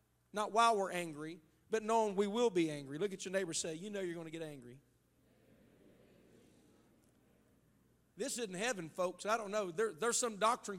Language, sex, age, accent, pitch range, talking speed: English, male, 40-59, American, 165-220 Hz, 185 wpm